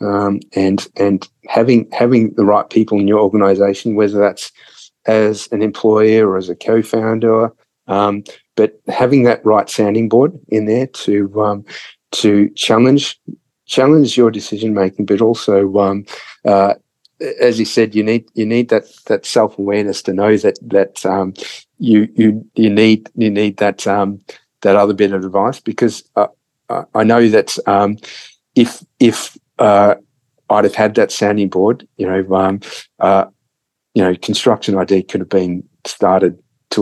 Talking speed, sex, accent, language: 160 wpm, male, Australian, English